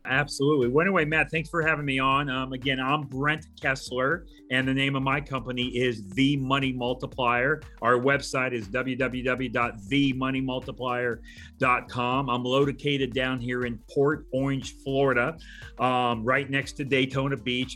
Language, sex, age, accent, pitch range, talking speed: English, male, 40-59, American, 125-140 Hz, 140 wpm